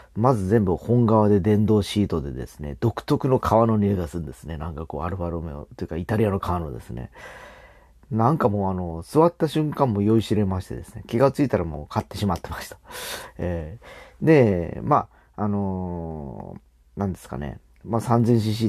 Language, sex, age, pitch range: Japanese, male, 40-59, 85-115 Hz